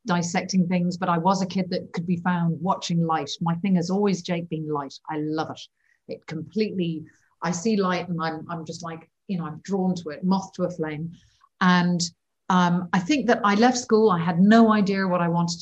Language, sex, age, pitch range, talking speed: English, female, 40-59, 165-195 Hz, 225 wpm